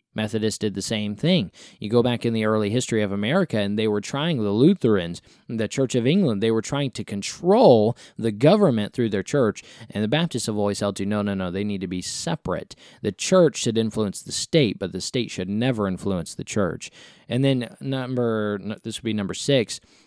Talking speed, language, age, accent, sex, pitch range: 210 wpm, English, 20-39, American, male, 105-135 Hz